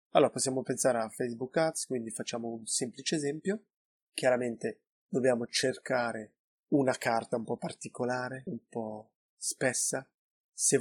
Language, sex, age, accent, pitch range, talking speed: Italian, male, 20-39, native, 120-135 Hz, 130 wpm